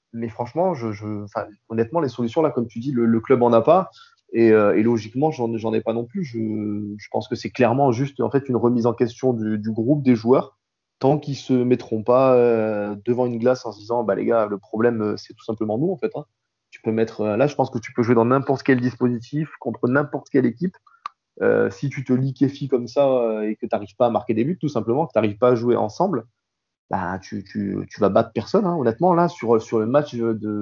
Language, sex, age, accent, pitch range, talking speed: French, male, 20-39, French, 110-130 Hz, 255 wpm